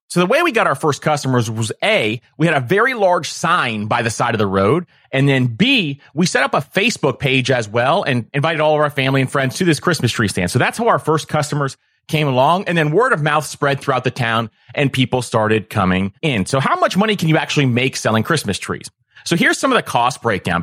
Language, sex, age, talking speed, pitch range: English, male, 30-49, 250 wpm, 125-165 Hz